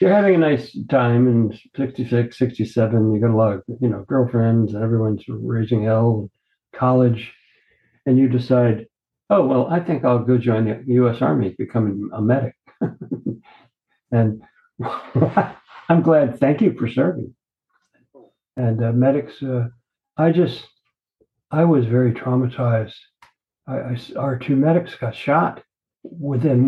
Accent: American